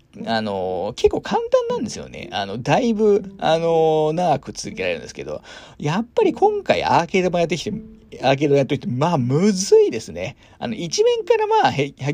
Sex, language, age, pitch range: male, Japanese, 40-59, 135-215 Hz